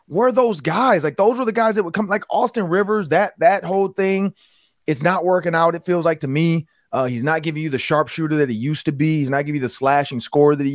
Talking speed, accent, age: 275 wpm, American, 30-49